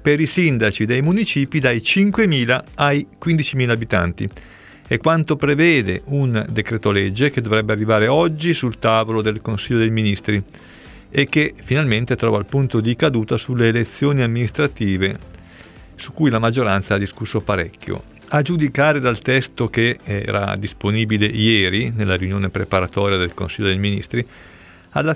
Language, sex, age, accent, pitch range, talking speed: Italian, male, 40-59, native, 105-135 Hz, 145 wpm